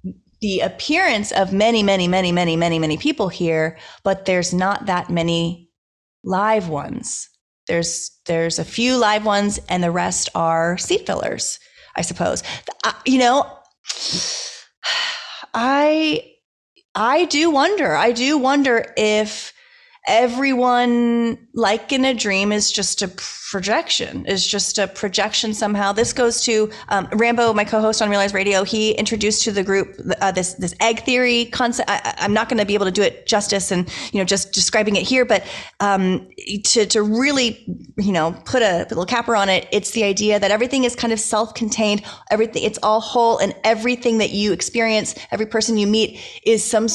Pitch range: 190-235 Hz